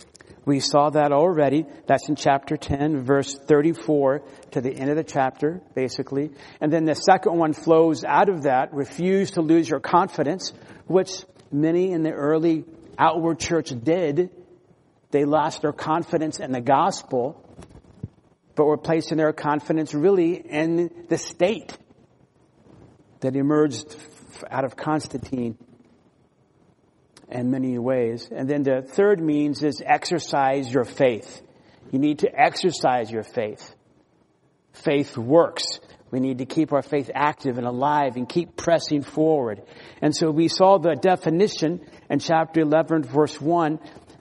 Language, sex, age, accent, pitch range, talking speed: English, male, 50-69, American, 140-165 Hz, 140 wpm